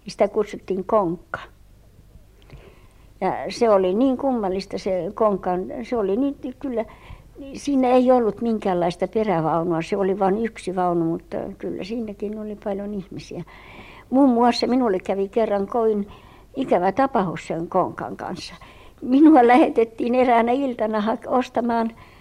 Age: 60-79